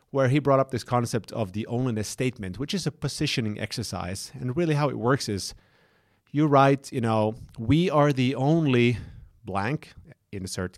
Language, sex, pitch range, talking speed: English, male, 105-130 Hz, 175 wpm